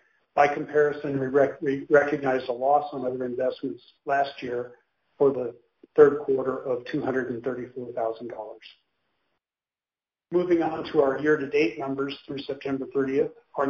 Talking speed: 125 wpm